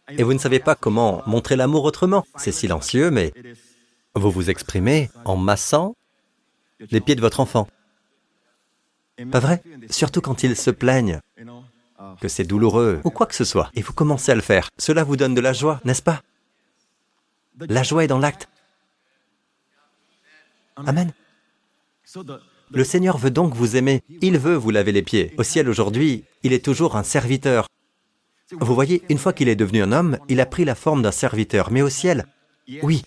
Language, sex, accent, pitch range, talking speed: French, male, French, 115-150 Hz, 175 wpm